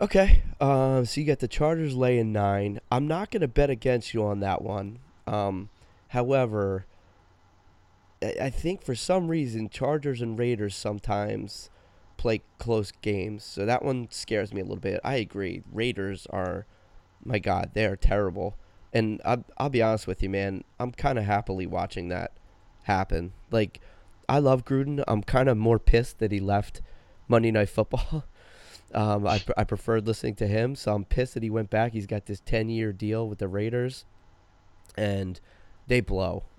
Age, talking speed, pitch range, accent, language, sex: 20-39, 175 wpm, 95-115 Hz, American, English, male